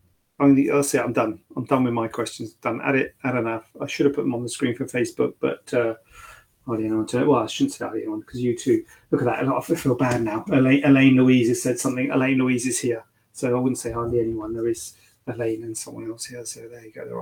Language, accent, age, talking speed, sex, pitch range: English, British, 30-49, 265 wpm, male, 115-150 Hz